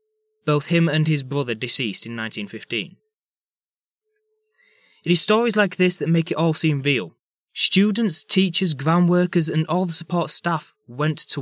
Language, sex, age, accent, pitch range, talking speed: English, male, 20-39, British, 145-185 Hz, 160 wpm